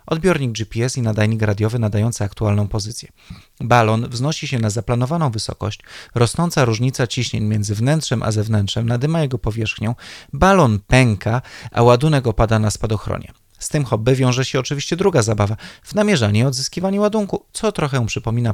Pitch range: 110-140 Hz